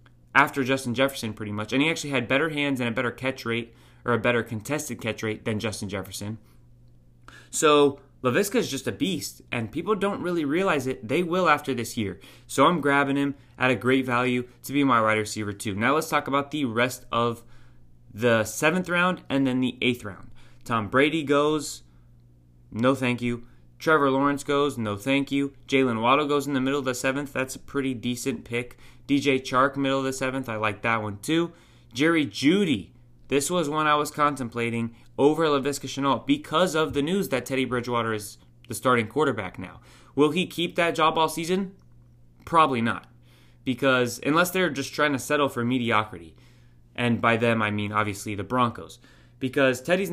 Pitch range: 115-140 Hz